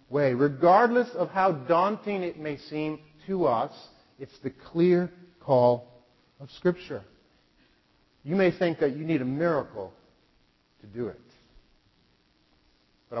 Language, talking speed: English, 125 wpm